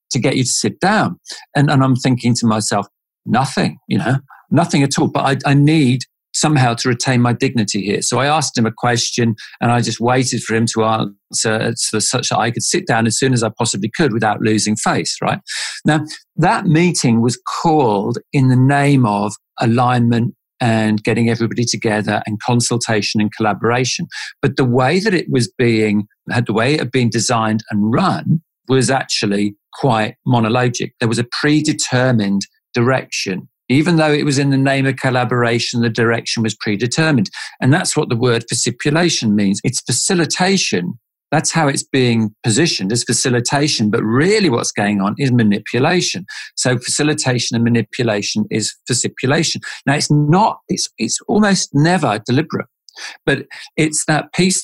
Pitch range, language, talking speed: 115-150 Hz, English, 170 wpm